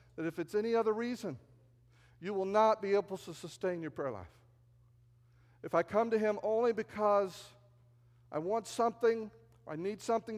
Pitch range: 120-195 Hz